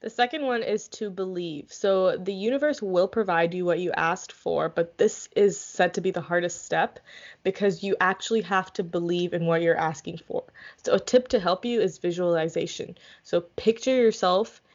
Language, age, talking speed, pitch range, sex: English, 10-29, 190 wpm, 170-200 Hz, female